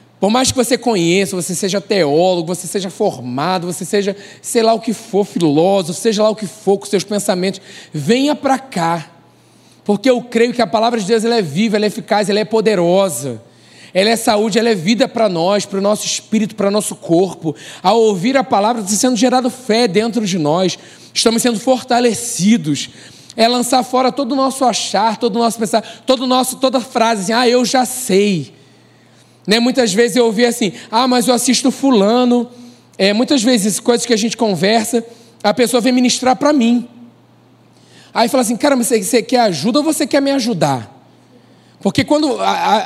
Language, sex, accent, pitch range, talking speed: Portuguese, male, Brazilian, 195-250 Hz, 195 wpm